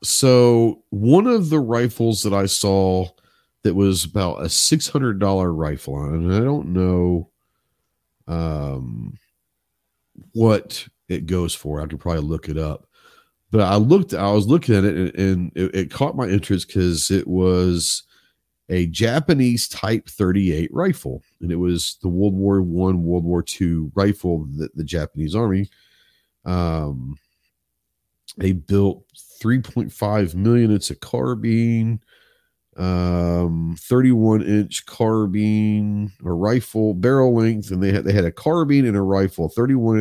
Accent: American